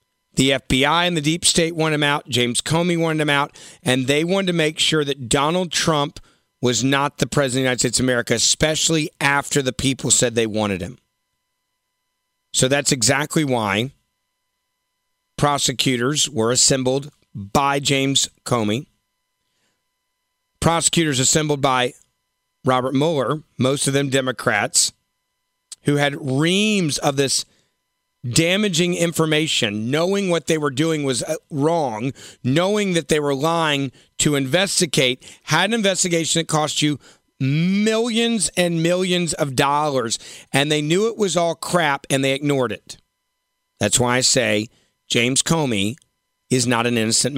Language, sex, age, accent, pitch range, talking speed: English, male, 40-59, American, 130-165 Hz, 145 wpm